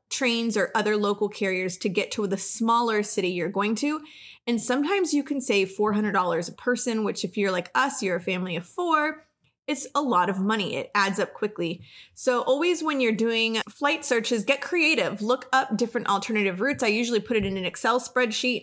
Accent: American